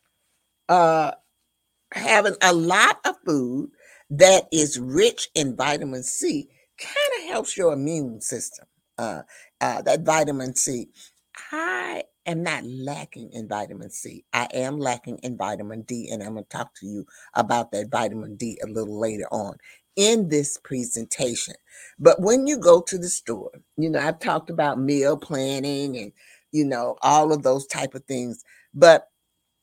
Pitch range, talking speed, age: 125-185 Hz, 160 wpm, 50-69